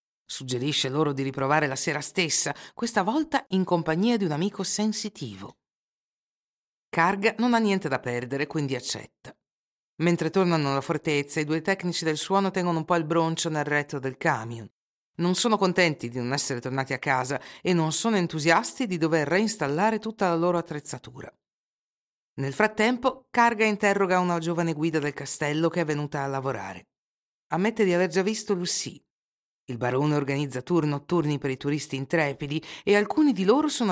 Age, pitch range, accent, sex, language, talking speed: 50-69, 140-195 Hz, native, female, Italian, 170 wpm